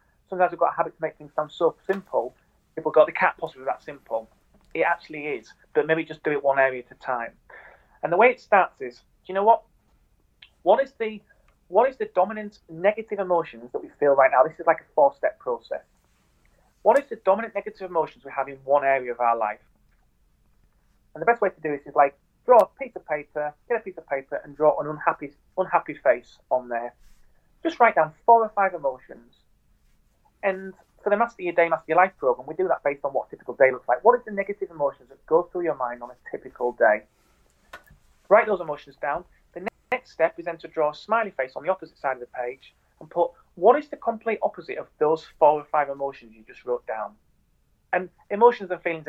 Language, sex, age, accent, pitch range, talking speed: English, male, 30-49, British, 140-205 Hz, 230 wpm